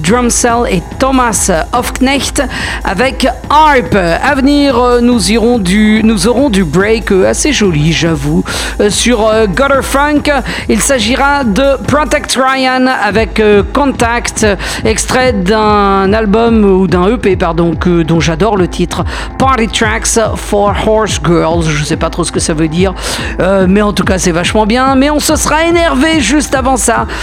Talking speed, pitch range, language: 150 wpm, 205-265 Hz, French